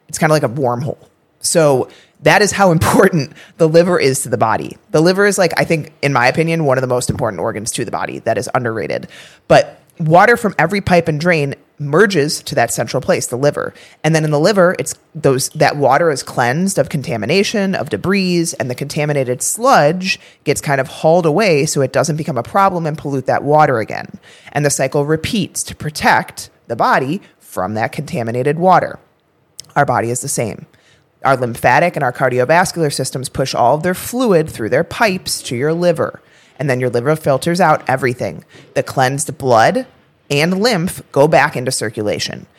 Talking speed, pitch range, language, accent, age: 195 wpm, 135-175 Hz, English, American, 30-49